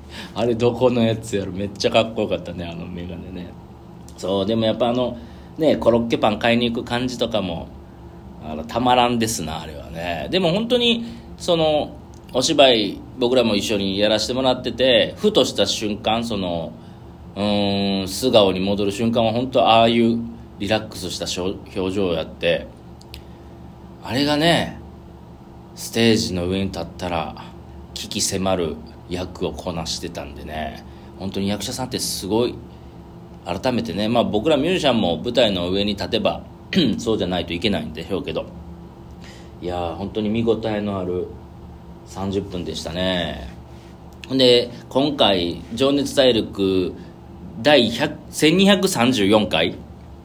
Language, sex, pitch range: Japanese, male, 85-120 Hz